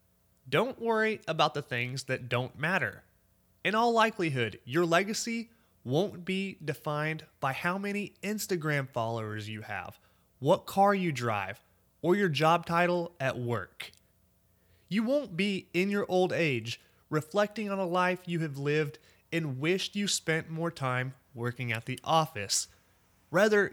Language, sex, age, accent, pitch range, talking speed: English, male, 30-49, American, 130-190 Hz, 145 wpm